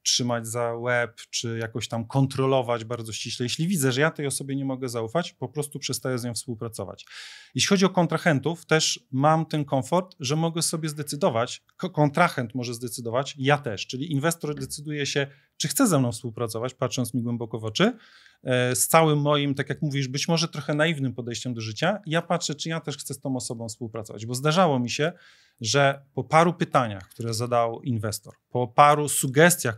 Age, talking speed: 30-49, 185 wpm